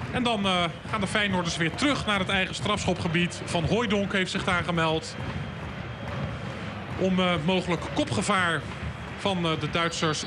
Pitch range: 200-275 Hz